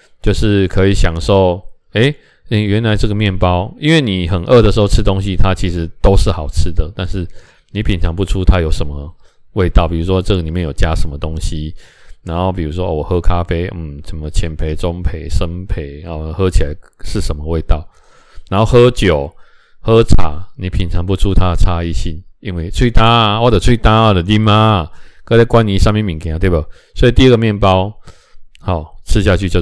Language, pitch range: Chinese, 80-100 Hz